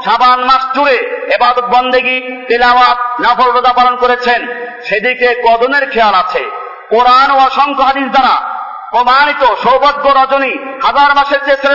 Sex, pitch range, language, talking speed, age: male, 245-285 Hz, Bengali, 70 wpm, 50-69